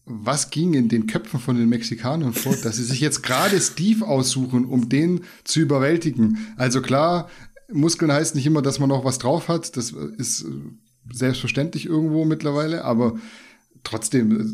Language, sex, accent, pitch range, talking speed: German, male, German, 120-150 Hz, 160 wpm